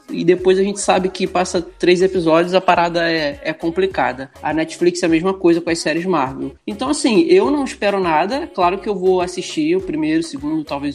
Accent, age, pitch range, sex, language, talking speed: Brazilian, 20-39, 165-235 Hz, male, Portuguese, 220 wpm